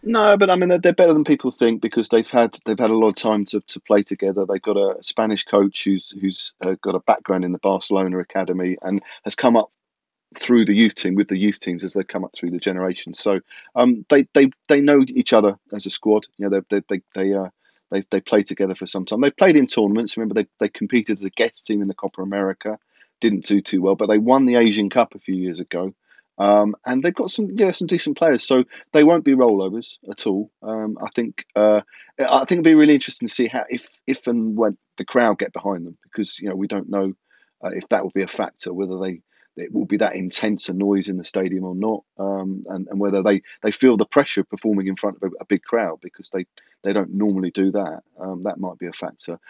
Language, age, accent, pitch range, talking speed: English, 30-49, British, 95-115 Hz, 250 wpm